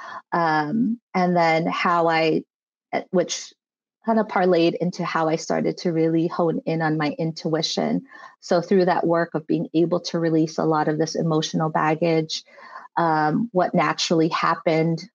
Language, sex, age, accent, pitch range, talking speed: English, female, 30-49, American, 165-210 Hz, 155 wpm